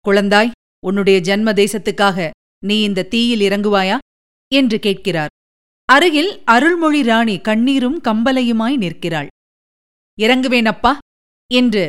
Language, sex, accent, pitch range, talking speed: Tamil, female, native, 195-285 Hz, 85 wpm